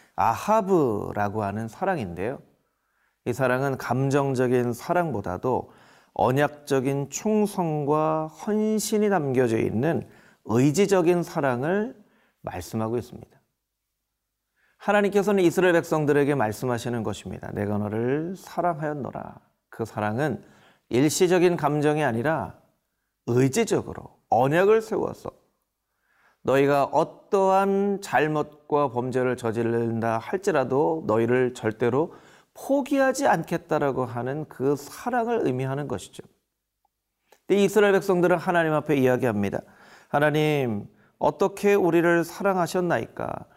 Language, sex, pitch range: Korean, male, 125-190 Hz